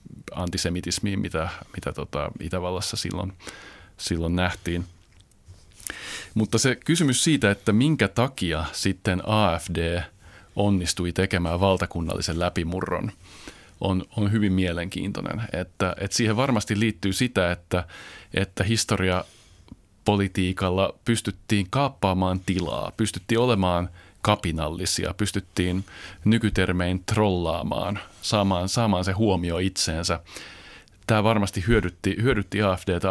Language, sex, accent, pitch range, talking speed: Finnish, male, native, 90-105 Hz, 90 wpm